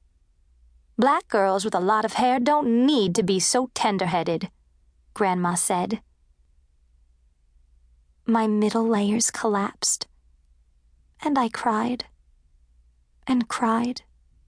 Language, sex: English, female